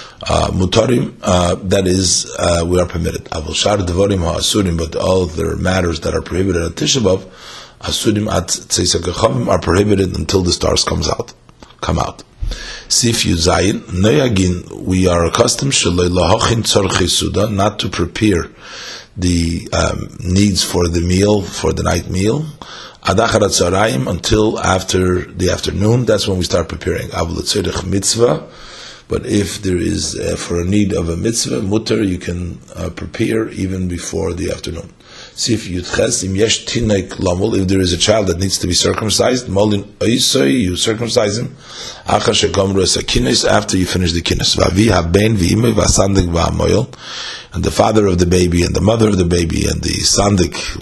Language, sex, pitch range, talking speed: English, male, 90-105 Hz, 130 wpm